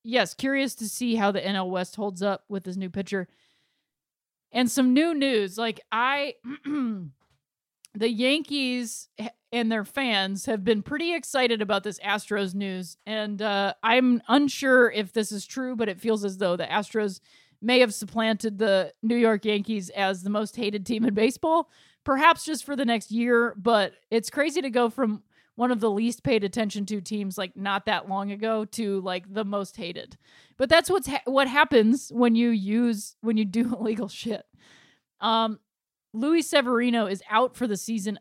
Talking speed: 180 wpm